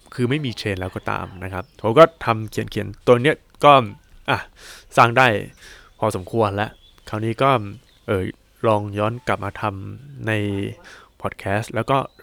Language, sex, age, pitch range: Thai, male, 20-39, 100-130 Hz